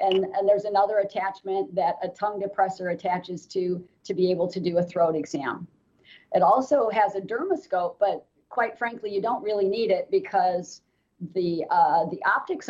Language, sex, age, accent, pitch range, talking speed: English, female, 40-59, American, 165-195 Hz, 175 wpm